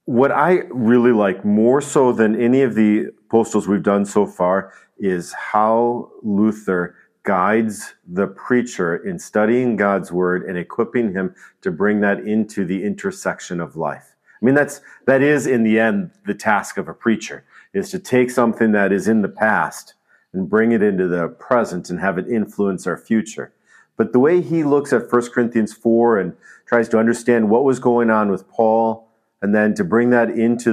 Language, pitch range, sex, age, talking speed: English, 100-120 Hz, male, 50-69, 185 wpm